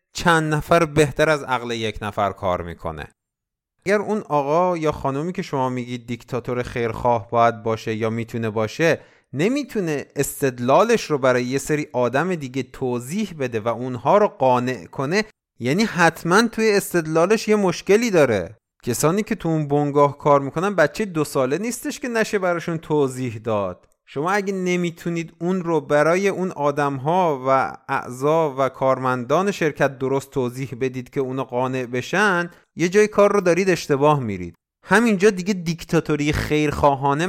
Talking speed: 150 wpm